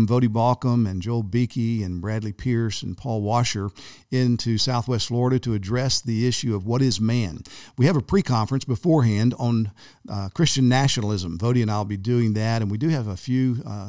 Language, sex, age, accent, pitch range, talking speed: English, male, 50-69, American, 105-125 Hz, 200 wpm